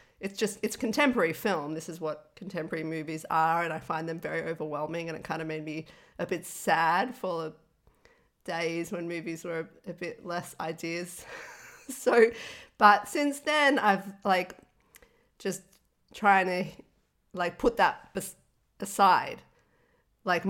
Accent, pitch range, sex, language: Australian, 155-190 Hz, female, English